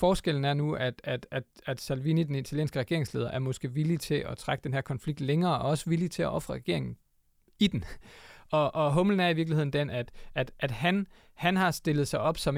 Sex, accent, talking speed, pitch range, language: male, native, 220 wpm, 125-150 Hz, Danish